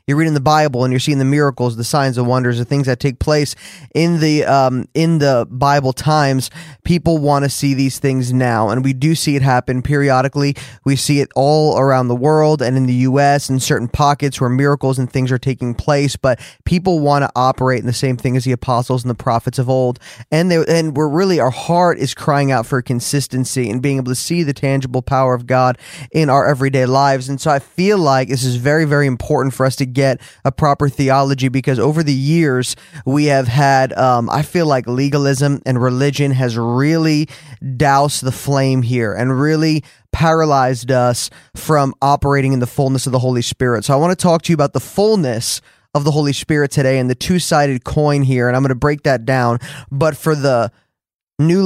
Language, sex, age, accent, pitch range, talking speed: English, male, 20-39, American, 130-150 Hz, 215 wpm